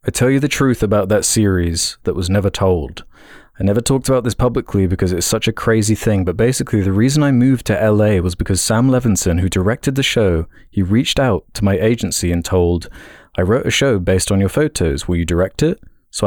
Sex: male